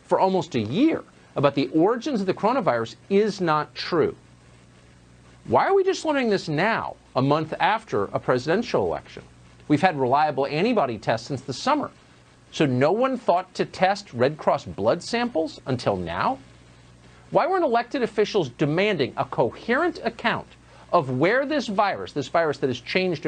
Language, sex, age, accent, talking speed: English, male, 50-69, American, 160 wpm